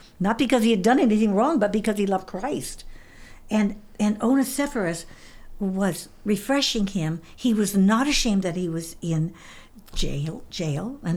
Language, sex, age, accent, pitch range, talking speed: English, female, 60-79, American, 195-270 Hz, 155 wpm